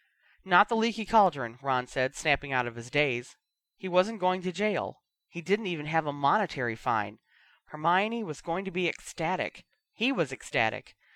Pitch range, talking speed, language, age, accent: 140-190 Hz, 170 wpm, English, 30-49, American